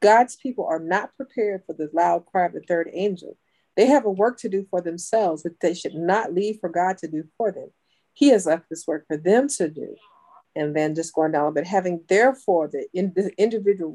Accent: American